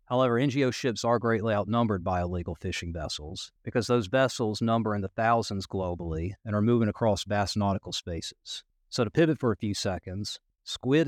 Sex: male